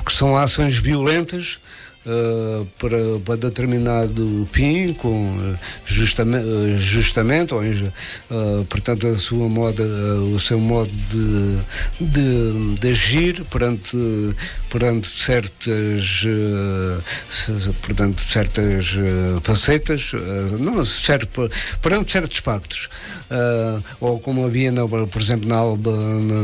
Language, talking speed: Portuguese, 110 wpm